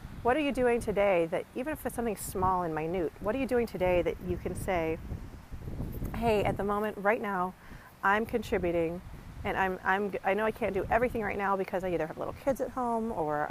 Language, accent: English, American